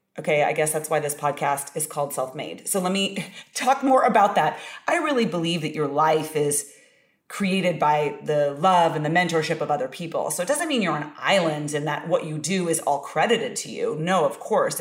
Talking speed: 225 wpm